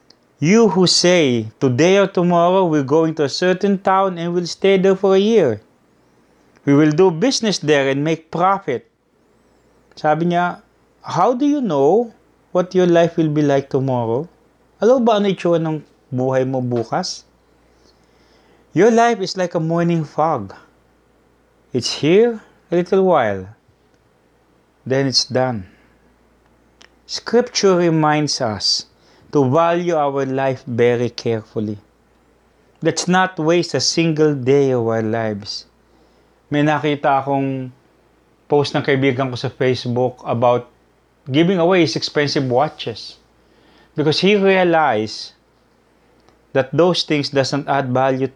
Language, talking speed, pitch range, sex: English, 125 wpm, 130-175 Hz, male